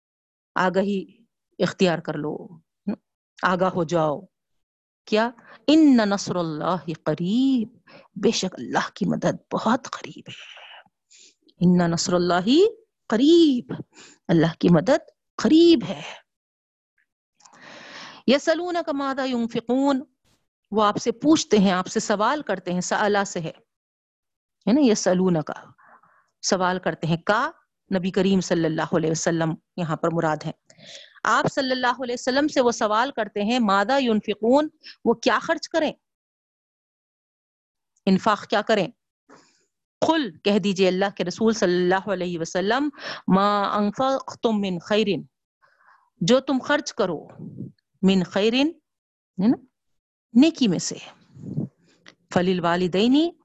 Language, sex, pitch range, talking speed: Urdu, female, 180-260 Hz, 120 wpm